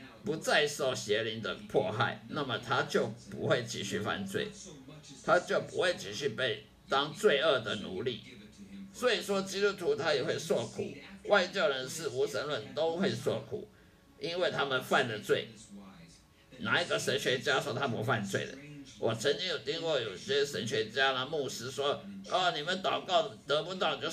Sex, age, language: male, 50-69, Chinese